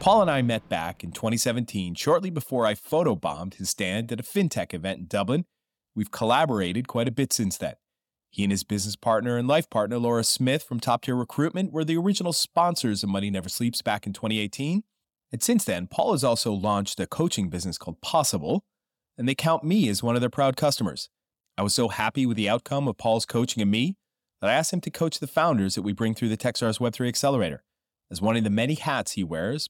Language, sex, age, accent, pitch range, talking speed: English, male, 30-49, American, 105-145 Hz, 220 wpm